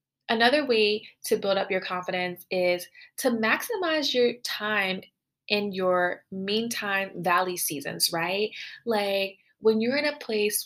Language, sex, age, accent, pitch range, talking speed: English, female, 20-39, American, 180-220 Hz, 135 wpm